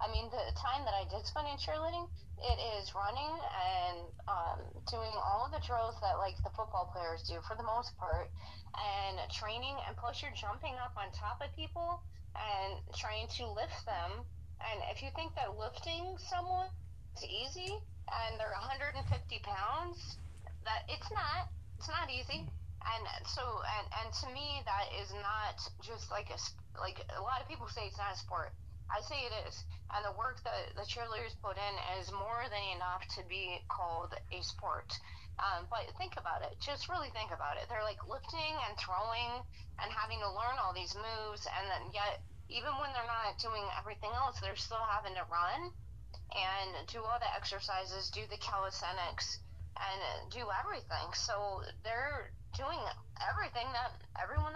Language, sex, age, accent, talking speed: English, female, 20-39, American, 180 wpm